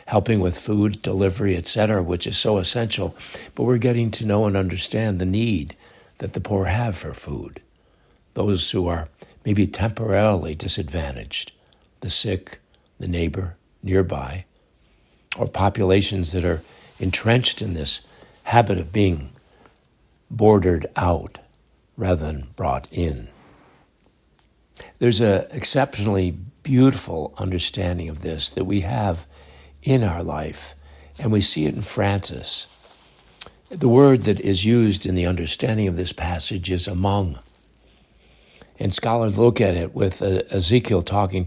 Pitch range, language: 90-110 Hz, English